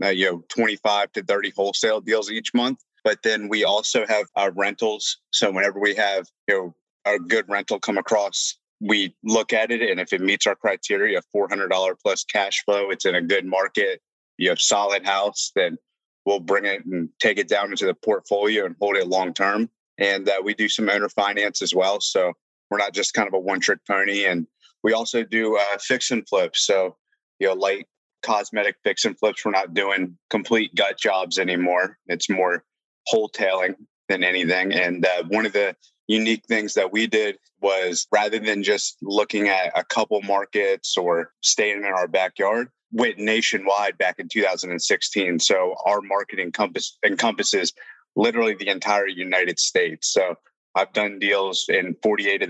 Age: 30-49